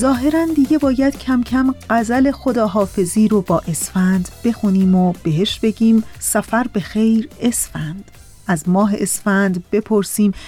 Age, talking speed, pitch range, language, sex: 30-49, 125 wpm, 205-270 Hz, Persian, female